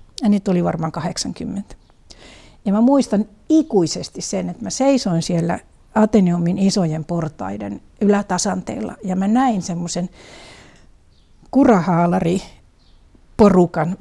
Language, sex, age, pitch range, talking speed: Finnish, female, 60-79, 175-220 Hz, 100 wpm